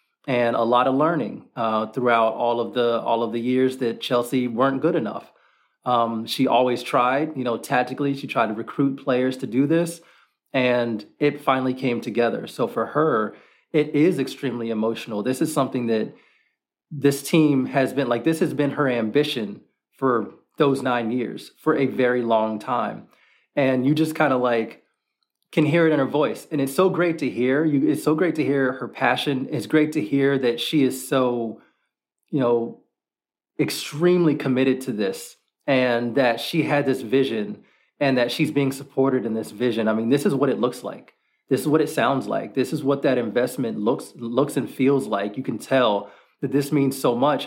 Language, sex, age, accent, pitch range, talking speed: English, male, 30-49, American, 120-145 Hz, 195 wpm